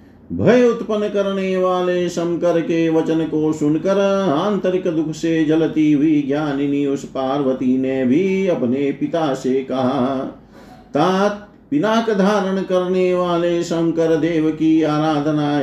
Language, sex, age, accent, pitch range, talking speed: Hindi, male, 50-69, native, 145-180 Hz, 120 wpm